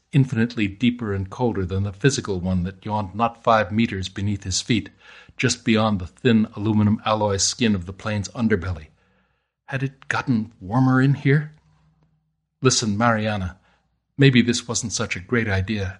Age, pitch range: 60-79, 95-135 Hz